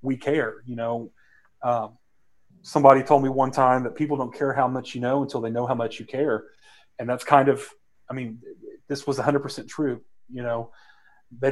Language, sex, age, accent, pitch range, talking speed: English, male, 30-49, American, 115-135 Hz, 200 wpm